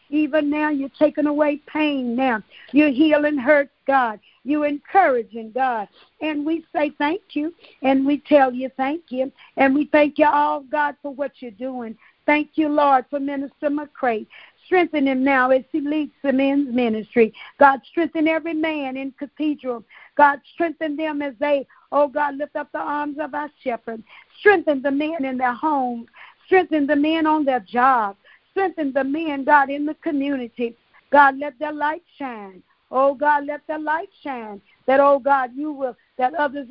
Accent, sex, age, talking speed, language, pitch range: American, female, 50-69, 175 wpm, English, 255-300 Hz